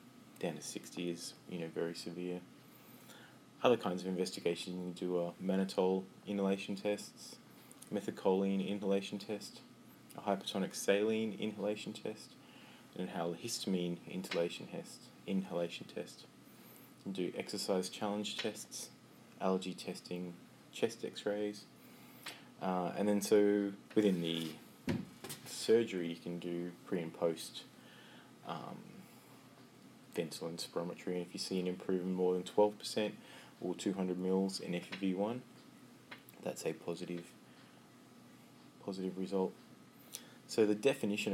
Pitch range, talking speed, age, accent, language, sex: 90-100 Hz, 120 wpm, 20-39, Australian, English, male